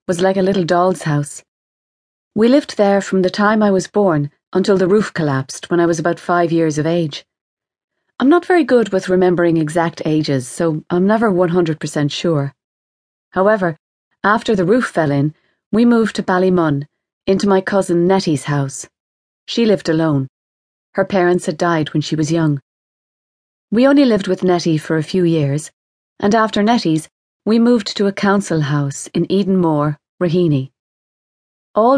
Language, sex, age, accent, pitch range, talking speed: English, female, 30-49, Irish, 155-200 Hz, 170 wpm